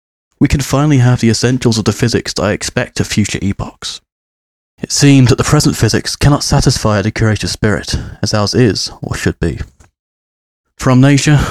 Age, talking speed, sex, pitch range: 30-49, 175 wpm, male, 100-125 Hz